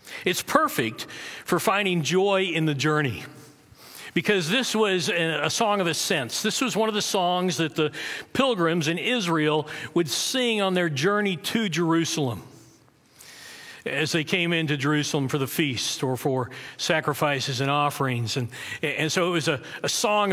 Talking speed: 160 wpm